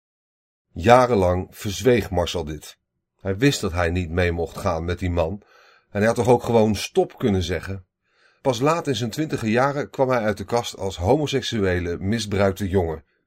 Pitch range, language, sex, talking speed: 100-130 Hz, Dutch, male, 175 wpm